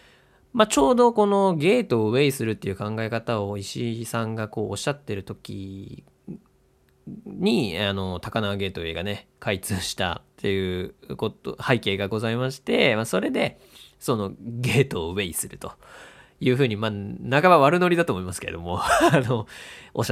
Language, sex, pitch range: Japanese, male, 95-120 Hz